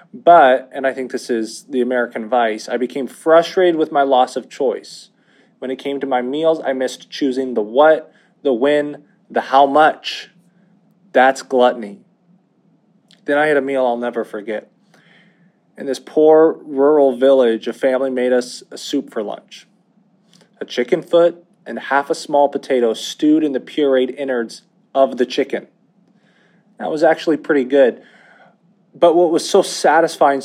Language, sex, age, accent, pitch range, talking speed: English, male, 20-39, American, 130-190 Hz, 160 wpm